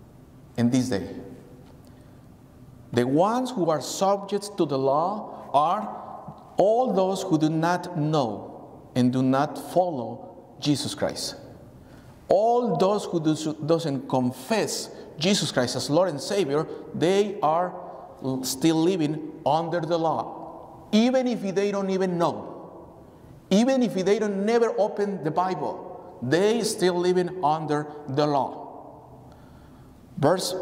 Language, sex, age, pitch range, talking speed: English, male, 50-69, 145-200 Hz, 125 wpm